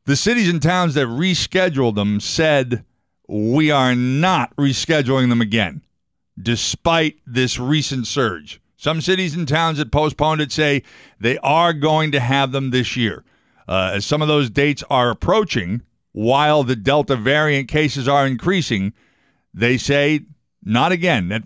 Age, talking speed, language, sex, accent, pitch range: 50-69, 150 wpm, English, male, American, 120-155 Hz